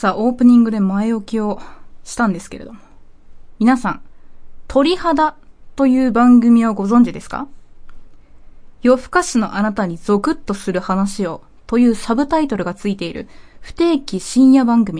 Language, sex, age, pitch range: Japanese, female, 20-39, 200-275 Hz